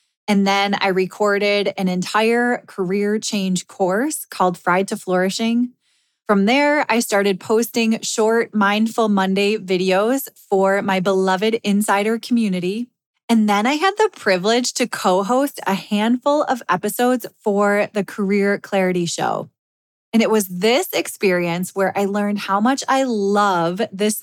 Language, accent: English, American